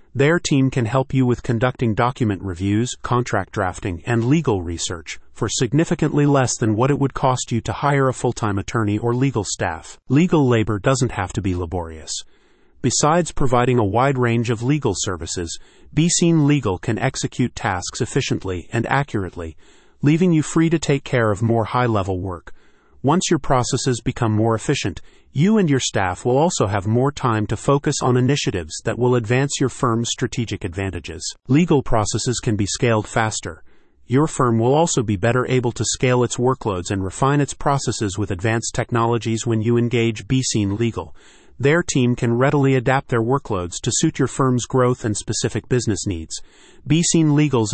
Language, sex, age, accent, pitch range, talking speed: English, male, 40-59, American, 105-135 Hz, 170 wpm